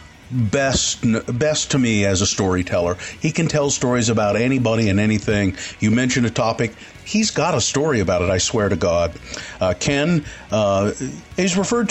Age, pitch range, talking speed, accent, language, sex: 50-69, 105-130 Hz, 175 wpm, American, English, male